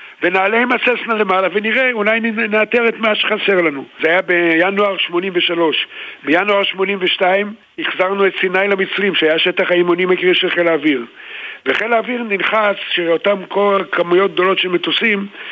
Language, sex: Hebrew, male